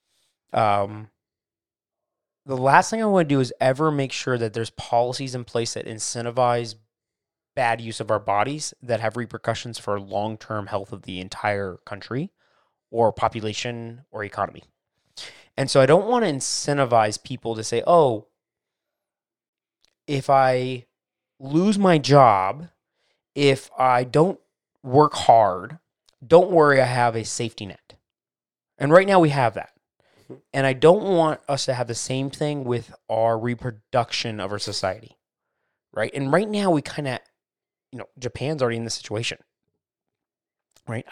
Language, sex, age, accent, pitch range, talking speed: English, male, 20-39, American, 110-140 Hz, 150 wpm